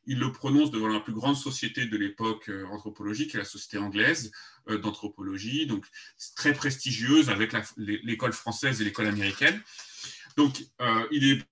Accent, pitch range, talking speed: French, 110-145 Hz, 150 wpm